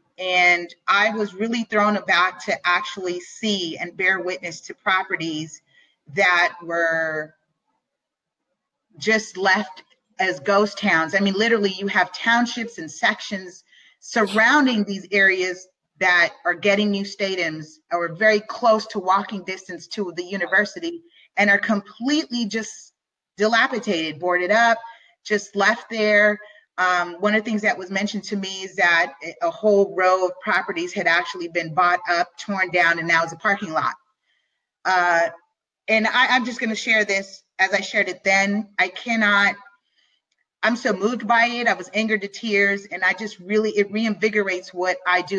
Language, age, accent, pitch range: English, 30-49, American, 180-215 Hz